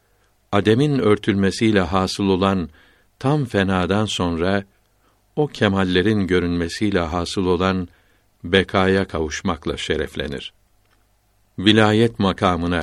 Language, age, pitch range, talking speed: Turkish, 60-79, 95-110 Hz, 80 wpm